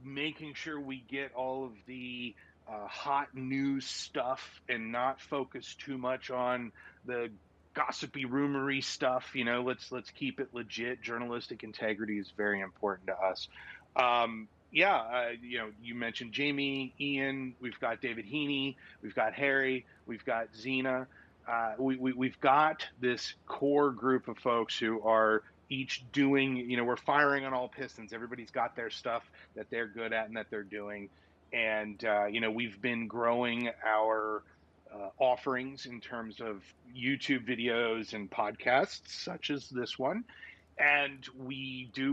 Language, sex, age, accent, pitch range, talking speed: English, male, 30-49, American, 110-135 Hz, 155 wpm